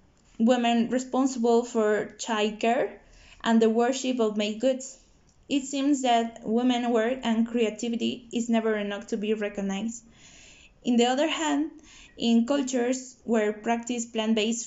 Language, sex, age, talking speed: English, female, 20-39, 135 wpm